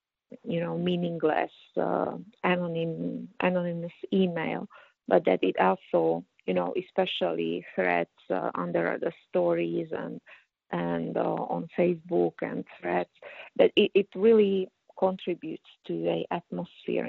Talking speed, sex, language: 120 wpm, female, English